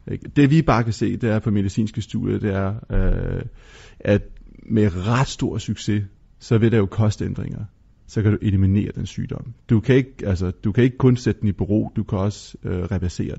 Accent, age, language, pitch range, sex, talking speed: native, 30-49, Danish, 100-120 Hz, male, 205 wpm